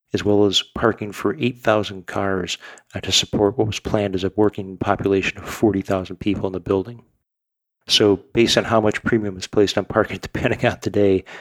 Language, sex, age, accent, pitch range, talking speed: English, male, 40-59, American, 95-105 Hz, 185 wpm